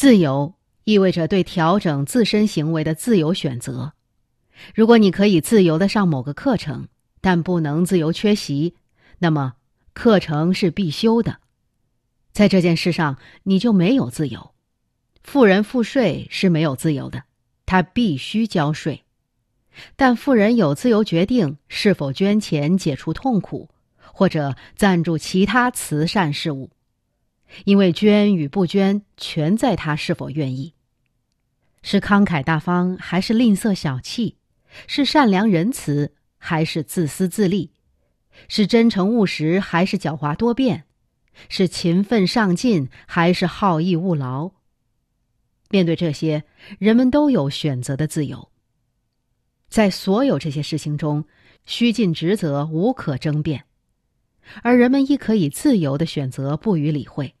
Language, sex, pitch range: English, female, 145-205 Hz